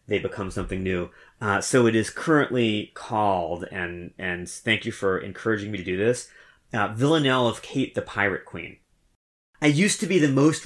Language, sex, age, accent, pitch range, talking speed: English, male, 30-49, American, 110-140 Hz, 185 wpm